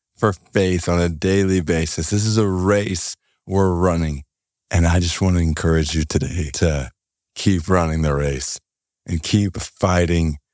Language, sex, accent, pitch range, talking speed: English, male, American, 80-95 Hz, 160 wpm